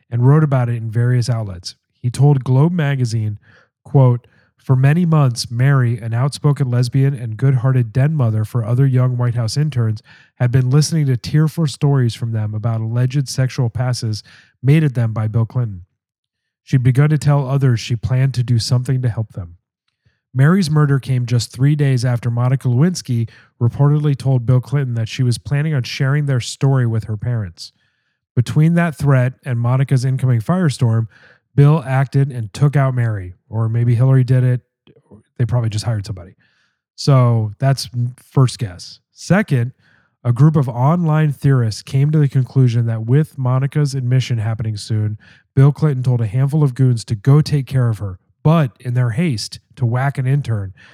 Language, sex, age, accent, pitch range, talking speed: English, male, 30-49, American, 115-140 Hz, 175 wpm